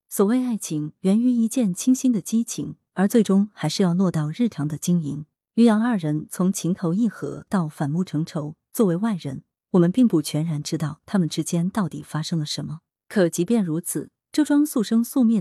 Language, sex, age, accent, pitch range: Chinese, female, 20-39, native, 155-225 Hz